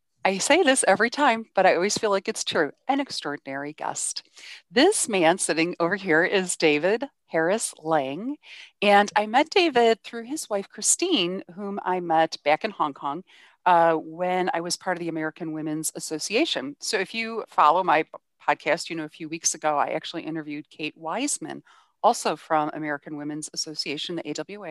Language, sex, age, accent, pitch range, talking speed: English, female, 40-59, American, 155-205 Hz, 175 wpm